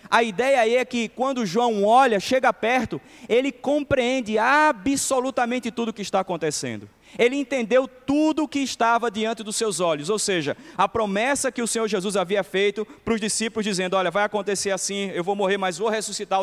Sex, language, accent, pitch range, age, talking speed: male, Portuguese, Brazilian, 190-230 Hz, 20-39, 190 wpm